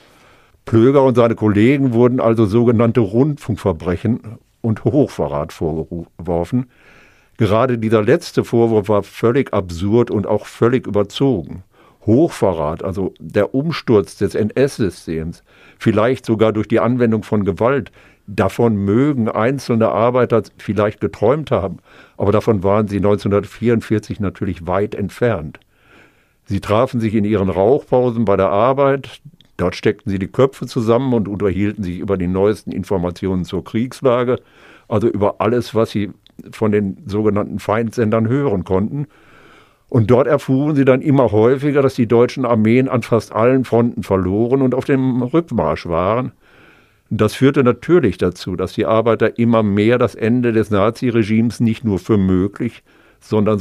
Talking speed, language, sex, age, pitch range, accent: 140 wpm, German, male, 50-69, 100-125 Hz, German